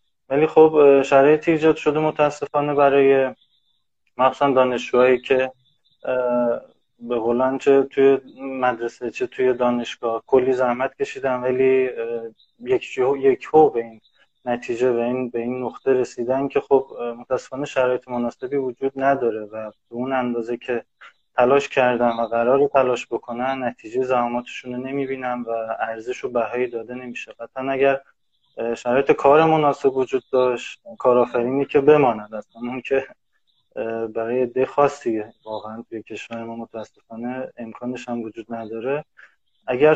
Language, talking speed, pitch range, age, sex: Persian, 130 wpm, 120-135 Hz, 20-39, male